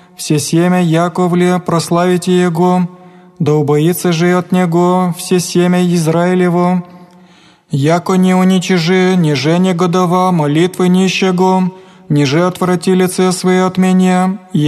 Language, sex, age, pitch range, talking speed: Greek, male, 20-39, 180-185 Hz, 110 wpm